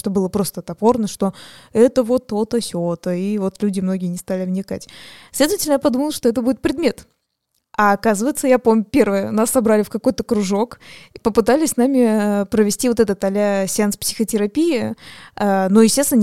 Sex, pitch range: female, 195-235 Hz